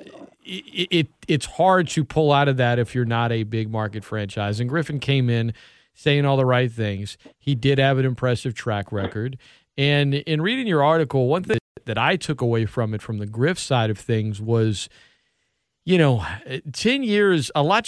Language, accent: English, American